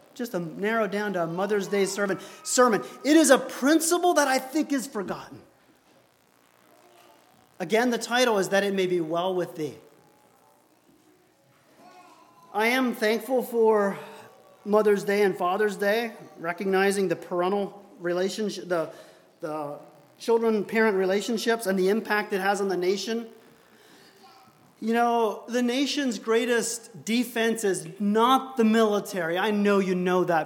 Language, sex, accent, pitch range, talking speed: English, male, American, 195-270 Hz, 135 wpm